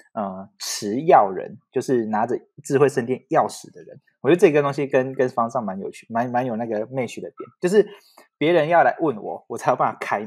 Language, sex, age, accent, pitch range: Chinese, male, 20-39, native, 130-210 Hz